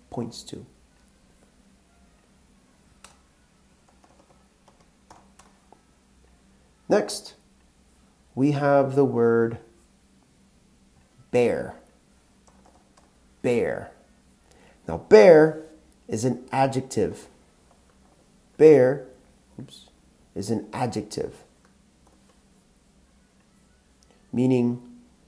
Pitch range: 80-135 Hz